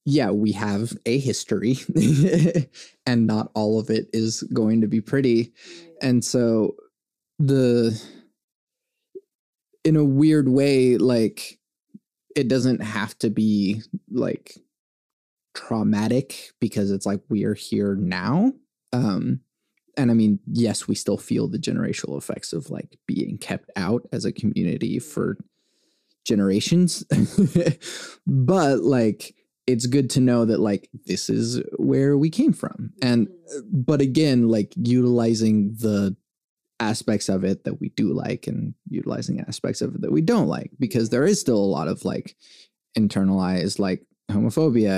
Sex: male